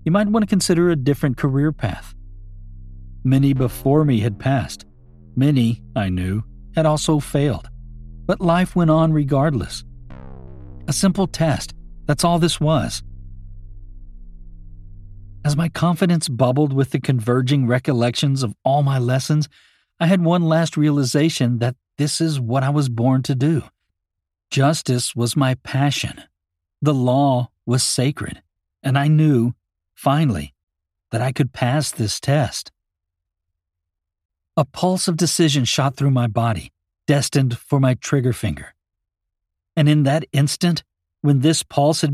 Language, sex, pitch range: English, male, 100-150 Hz